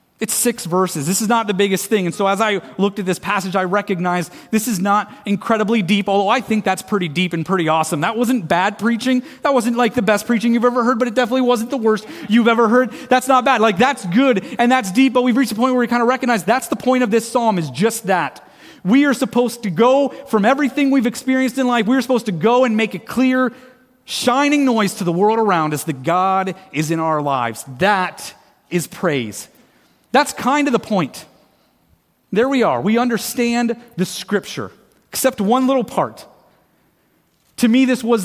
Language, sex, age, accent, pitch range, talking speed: English, male, 30-49, American, 190-250 Hz, 215 wpm